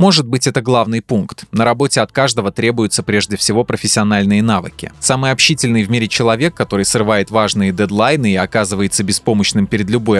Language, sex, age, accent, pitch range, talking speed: Russian, male, 20-39, native, 105-130 Hz, 165 wpm